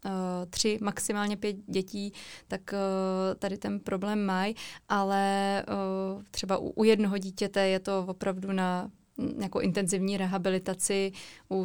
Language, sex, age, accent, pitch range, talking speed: Czech, female, 20-39, native, 185-205 Hz, 115 wpm